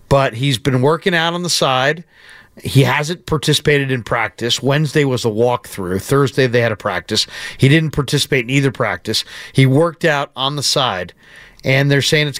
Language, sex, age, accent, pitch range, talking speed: English, male, 50-69, American, 120-150 Hz, 185 wpm